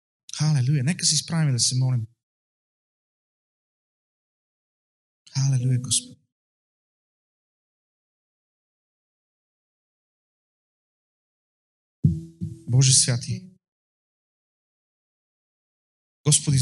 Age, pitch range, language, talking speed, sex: 40-59, 115-150 Hz, Bulgarian, 45 wpm, male